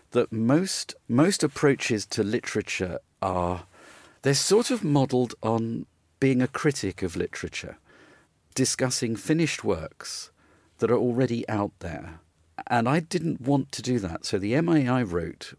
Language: English